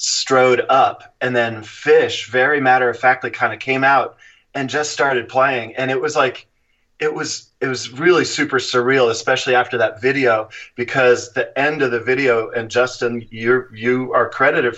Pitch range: 115-130 Hz